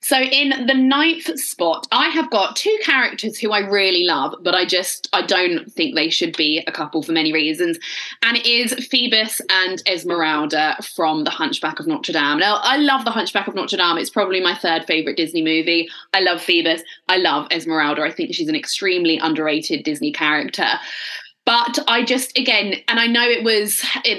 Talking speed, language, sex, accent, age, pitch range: 195 wpm, English, female, British, 20-39, 170-245 Hz